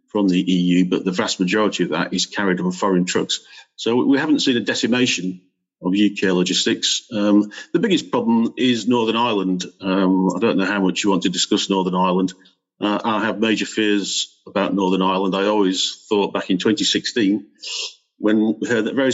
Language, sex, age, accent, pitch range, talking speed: German, male, 50-69, British, 95-120 Hz, 190 wpm